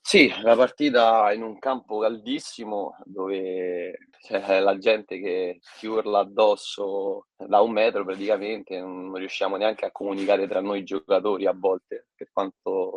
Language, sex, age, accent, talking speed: Italian, male, 20-39, native, 145 wpm